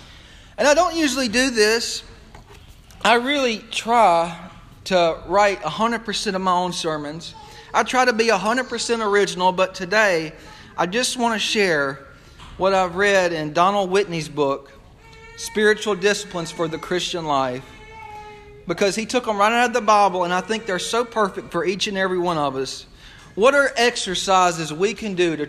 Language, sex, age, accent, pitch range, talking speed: English, male, 40-59, American, 165-225 Hz, 165 wpm